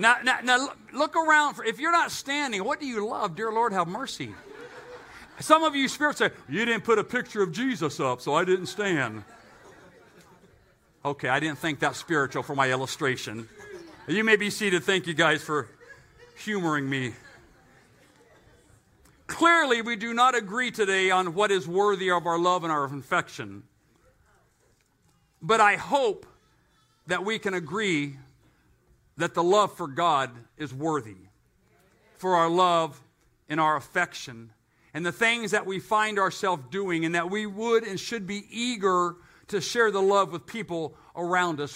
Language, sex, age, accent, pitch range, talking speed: English, male, 50-69, American, 160-215 Hz, 165 wpm